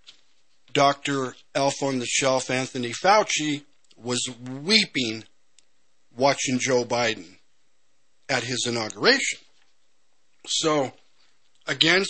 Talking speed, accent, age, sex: 85 wpm, American, 50-69, male